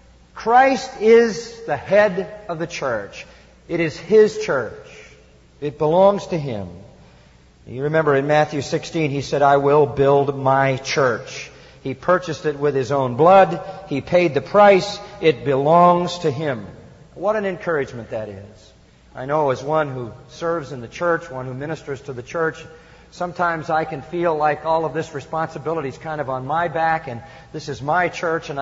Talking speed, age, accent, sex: 175 wpm, 40-59, American, male